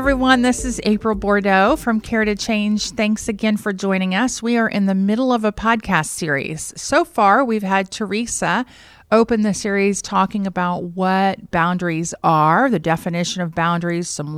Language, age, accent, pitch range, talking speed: English, 40-59, American, 170-215 Hz, 170 wpm